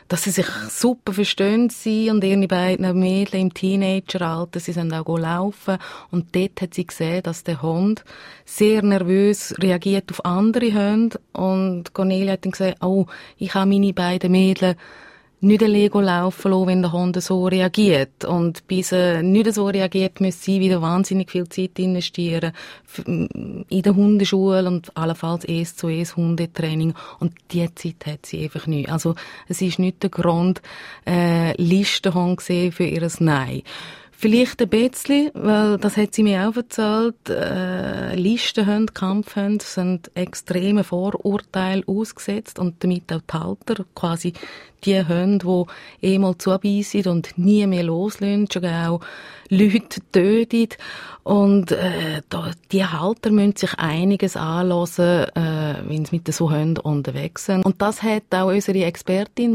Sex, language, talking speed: female, German, 155 wpm